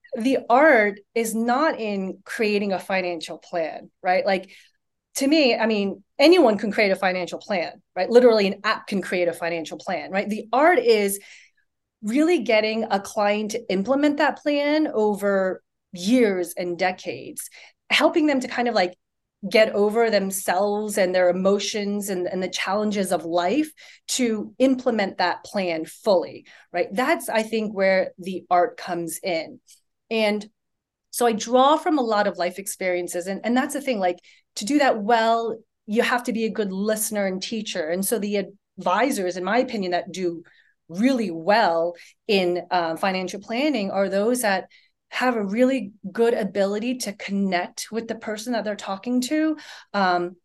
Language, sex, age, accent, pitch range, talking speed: English, female, 30-49, American, 185-235 Hz, 165 wpm